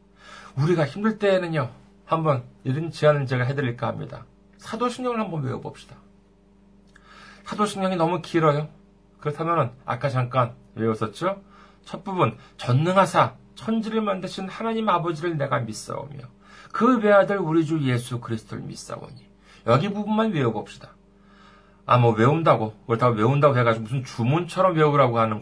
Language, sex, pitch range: Korean, male, 135-200 Hz